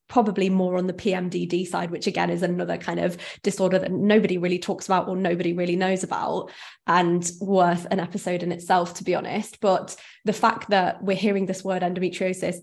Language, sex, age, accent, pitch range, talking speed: English, female, 20-39, British, 185-210 Hz, 195 wpm